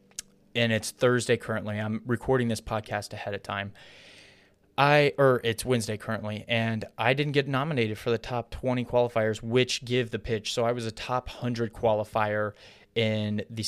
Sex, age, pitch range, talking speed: male, 20-39, 105-120 Hz, 170 wpm